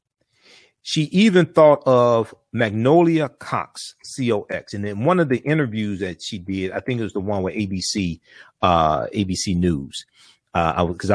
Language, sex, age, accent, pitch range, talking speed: English, male, 40-59, American, 100-135 Hz, 155 wpm